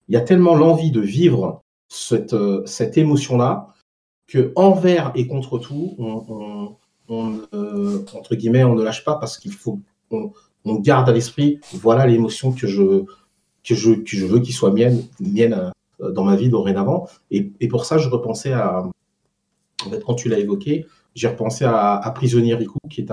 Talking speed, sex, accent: 180 wpm, male, French